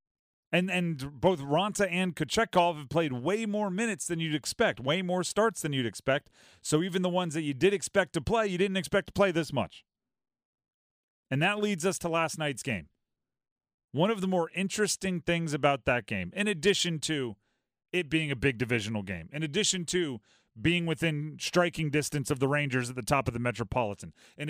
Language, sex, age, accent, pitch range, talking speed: English, male, 40-59, American, 135-185 Hz, 195 wpm